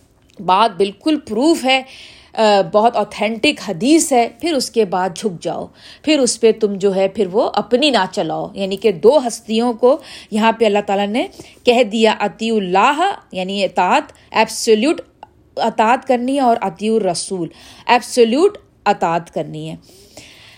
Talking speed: 155 wpm